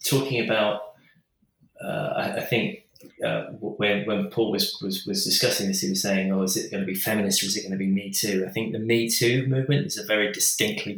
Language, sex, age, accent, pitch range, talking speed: English, male, 20-39, British, 100-120 Hz, 235 wpm